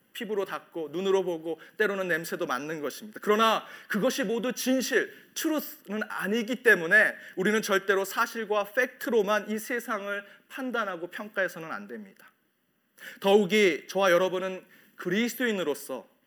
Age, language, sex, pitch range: 30-49, Korean, male, 185-235 Hz